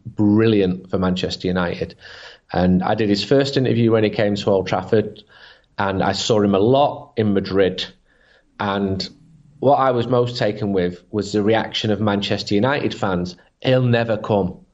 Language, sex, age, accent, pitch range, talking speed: English, male, 30-49, British, 105-135 Hz, 165 wpm